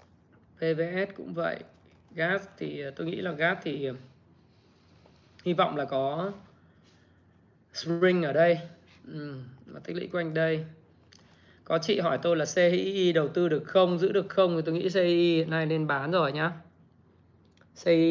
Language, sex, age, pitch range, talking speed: Vietnamese, male, 20-39, 135-175 Hz, 155 wpm